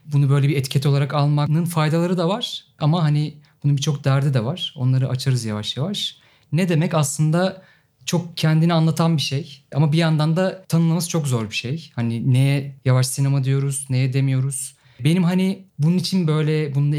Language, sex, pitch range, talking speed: Turkish, male, 130-155 Hz, 175 wpm